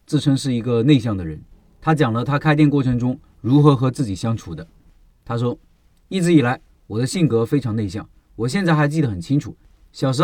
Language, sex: Chinese, male